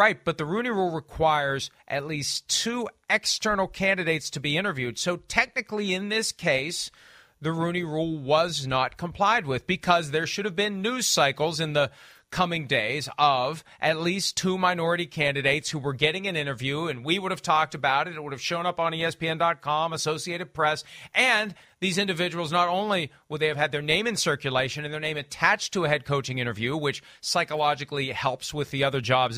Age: 40-59